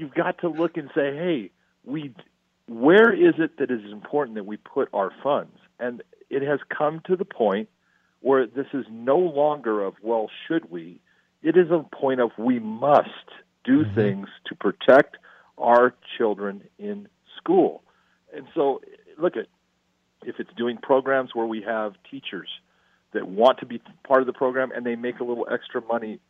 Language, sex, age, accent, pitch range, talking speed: English, male, 50-69, American, 115-170 Hz, 175 wpm